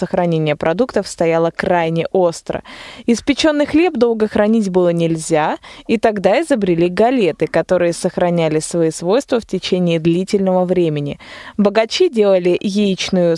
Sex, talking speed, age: female, 120 wpm, 20-39